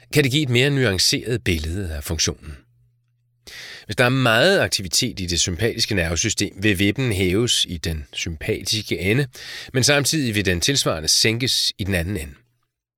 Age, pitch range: 30-49, 90-125 Hz